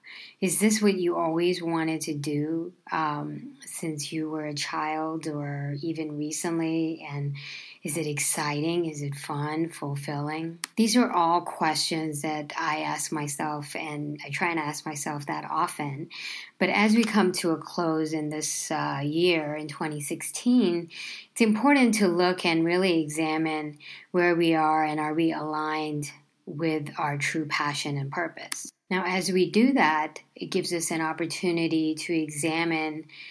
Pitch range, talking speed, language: 150-175 Hz, 155 wpm, English